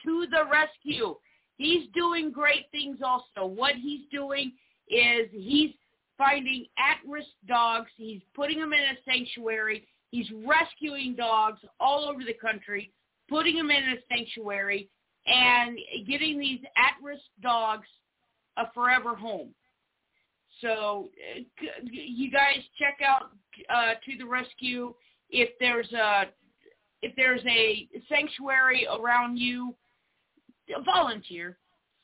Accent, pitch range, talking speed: American, 230-300 Hz, 115 wpm